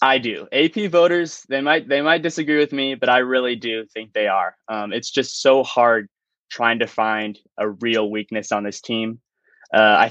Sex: male